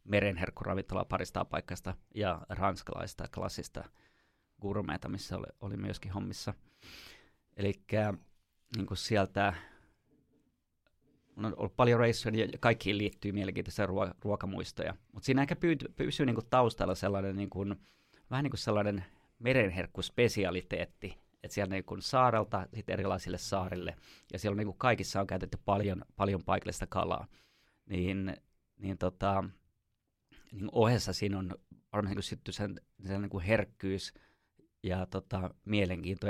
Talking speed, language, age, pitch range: 100 wpm, Finnish, 30-49, 95-110 Hz